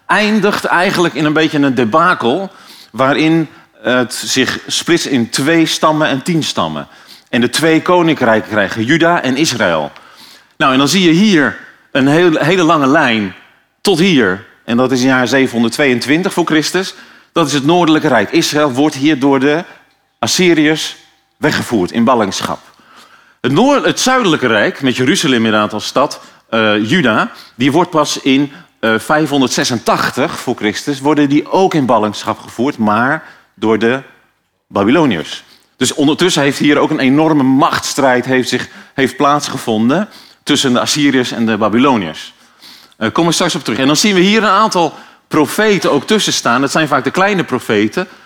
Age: 40-59